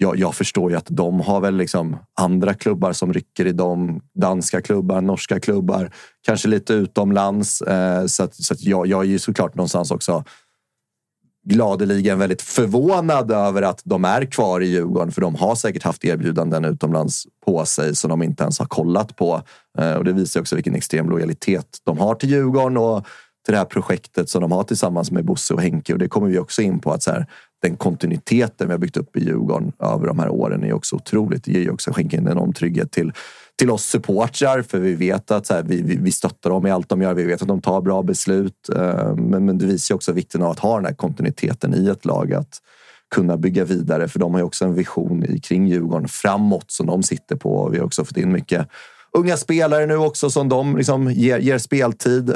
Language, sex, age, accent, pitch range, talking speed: Swedish, male, 30-49, native, 90-115 Hz, 225 wpm